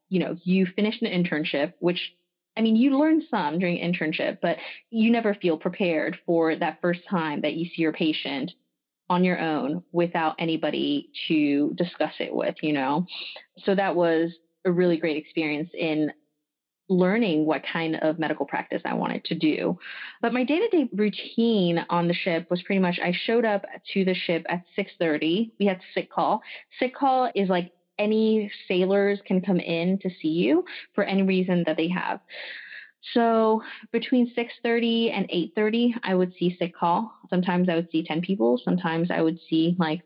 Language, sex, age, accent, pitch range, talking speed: English, female, 20-39, American, 165-205 Hz, 175 wpm